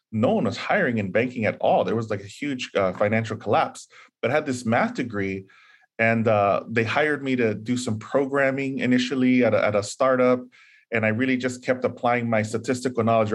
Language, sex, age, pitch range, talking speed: English, male, 20-39, 110-130 Hz, 200 wpm